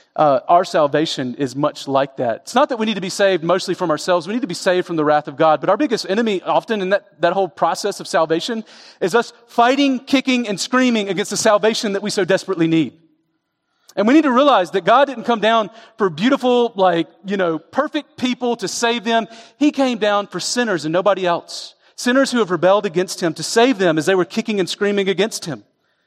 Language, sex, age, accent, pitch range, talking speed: English, male, 40-59, American, 180-245 Hz, 230 wpm